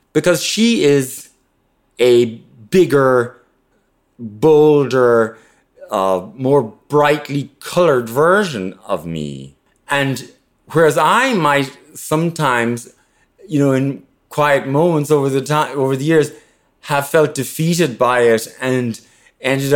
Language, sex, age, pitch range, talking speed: English, male, 30-49, 115-155 Hz, 110 wpm